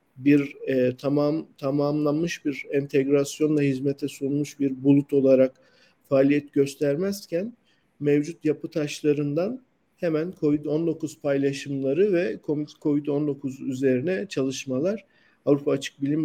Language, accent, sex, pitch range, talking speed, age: Turkish, native, male, 135-165 Hz, 95 wpm, 50-69